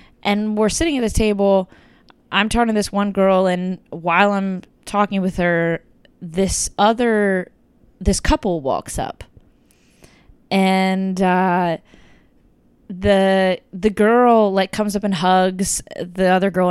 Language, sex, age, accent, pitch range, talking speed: English, female, 20-39, American, 175-200 Hz, 135 wpm